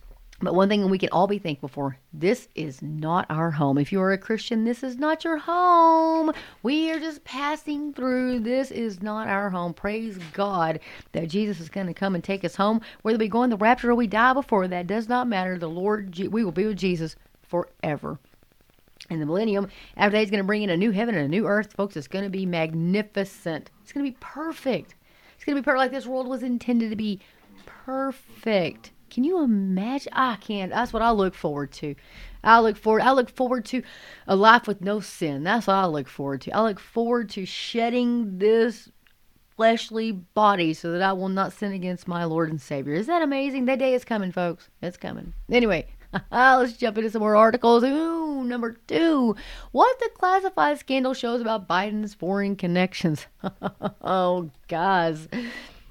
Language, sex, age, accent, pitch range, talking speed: English, female, 40-59, American, 185-245 Hz, 200 wpm